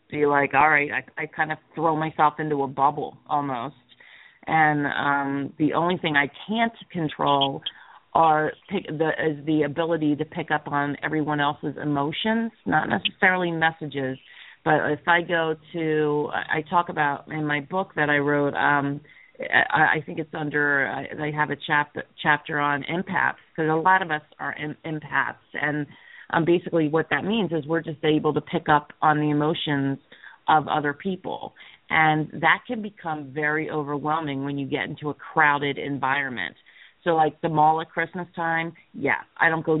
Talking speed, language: 165 wpm, English